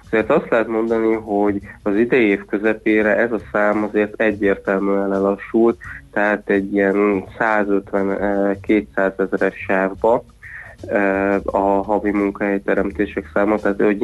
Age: 20-39